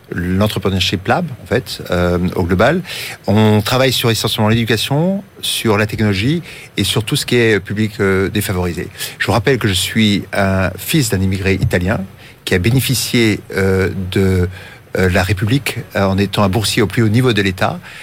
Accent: French